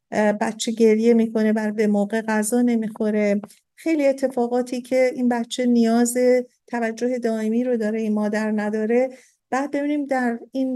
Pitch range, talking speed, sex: 215-240 Hz, 140 wpm, female